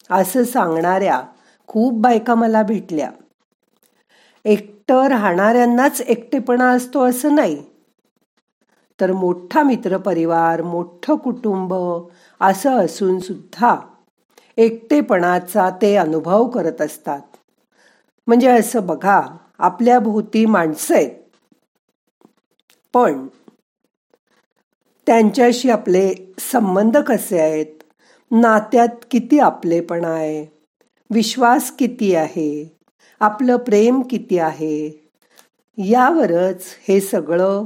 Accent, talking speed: native, 85 wpm